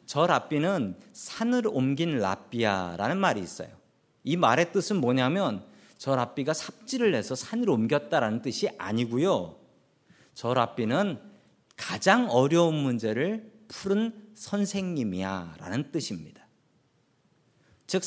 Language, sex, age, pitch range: Korean, male, 40-59, 135-205 Hz